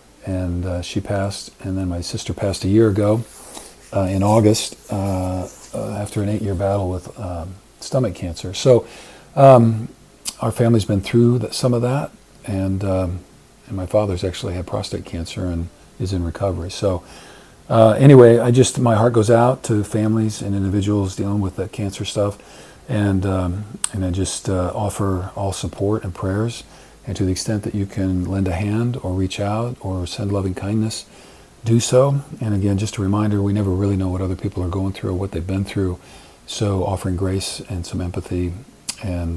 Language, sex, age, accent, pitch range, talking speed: English, male, 40-59, American, 95-110 Hz, 185 wpm